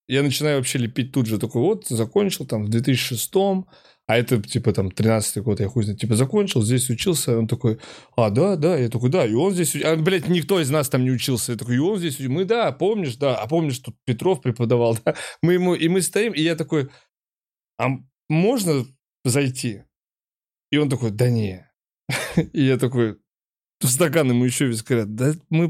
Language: Russian